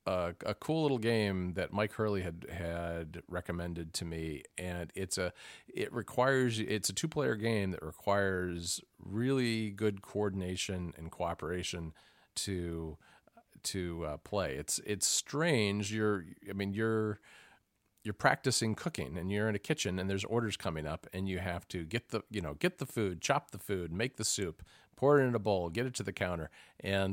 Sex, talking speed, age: male, 180 wpm, 40-59